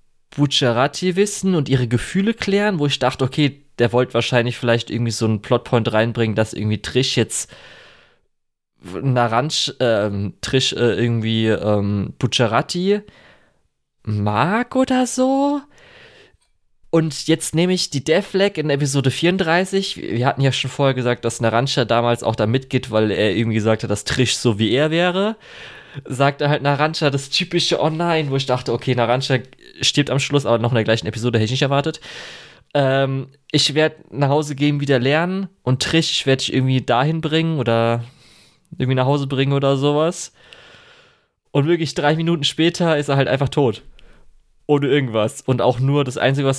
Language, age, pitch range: German, 20-39, 120-155 Hz